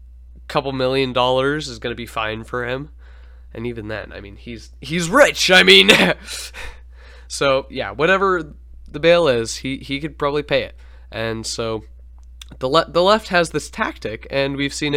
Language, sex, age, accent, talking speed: English, male, 20-39, American, 175 wpm